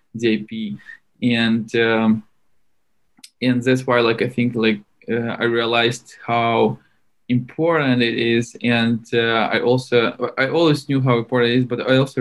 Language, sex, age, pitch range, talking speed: English, male, 20-39, 110-125 Hz, 150 wpm